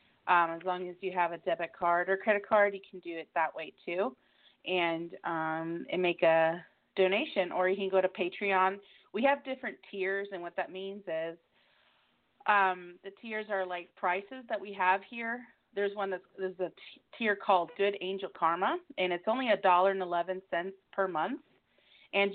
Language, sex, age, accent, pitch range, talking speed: English, female, 30-49, American, 175-200 Hz, 190 wpm